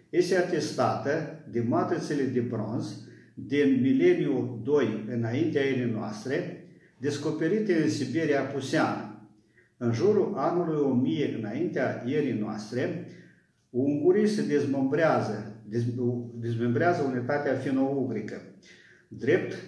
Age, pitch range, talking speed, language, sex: 50-69, 120-155 Hz, 90 wpm, Romanian, male